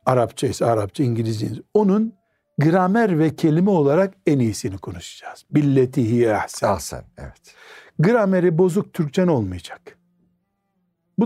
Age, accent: 60-79, native